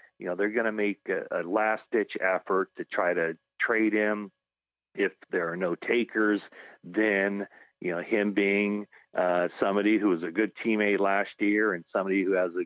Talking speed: 185 wpm